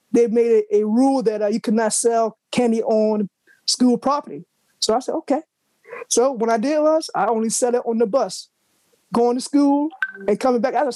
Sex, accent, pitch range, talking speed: male, American, 215-255 Hz, 210 wpm